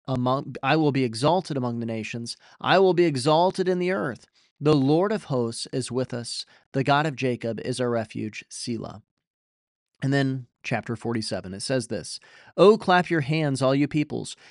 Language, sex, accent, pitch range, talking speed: English, male, American, 130-185 Hz, 180 wpm